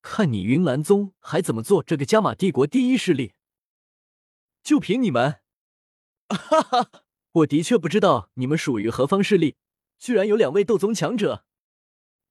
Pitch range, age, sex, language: 115-185 Hz, 20-39, male, Chinese